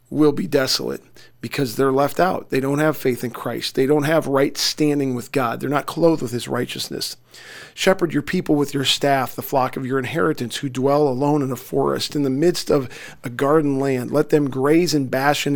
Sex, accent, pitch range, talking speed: male, American, 135-155 Hz, 210 wpm